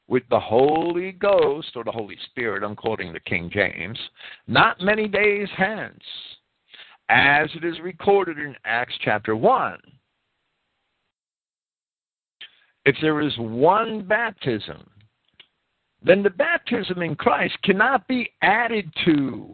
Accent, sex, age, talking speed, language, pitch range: American, male, 50-69, 120 wpm, English, 145-215 Hz